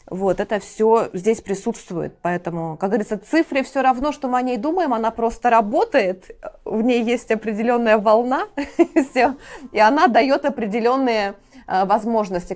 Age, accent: 20-39, native